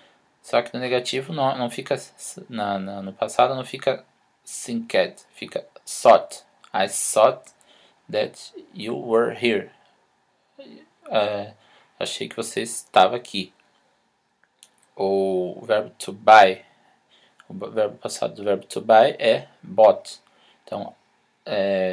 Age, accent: 20-39, Brazilian